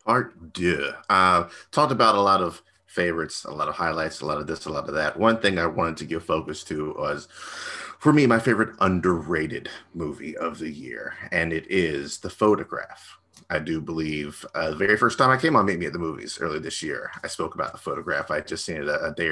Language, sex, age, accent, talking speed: English, male, 30-49, American, 235 wpm